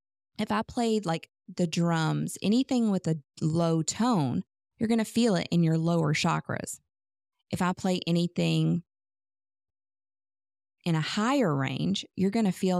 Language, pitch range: English, 155-195 Hz